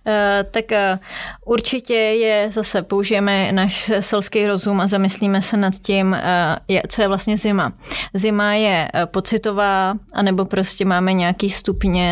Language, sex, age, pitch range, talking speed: Czech, female, 30-49, 185-205 Hz, 125 wpm